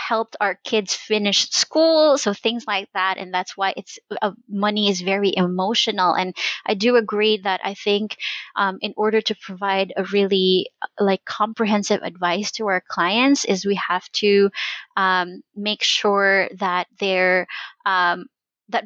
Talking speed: 155 wpm